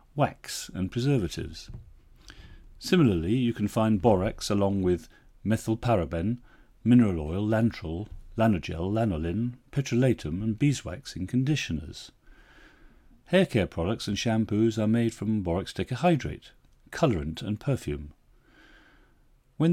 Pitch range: 85-120 Hz